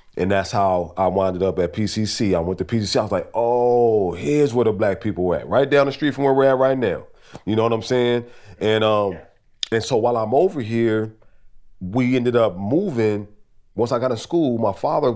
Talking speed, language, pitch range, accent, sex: 220 wpm, English, 105-135 Hz, American, male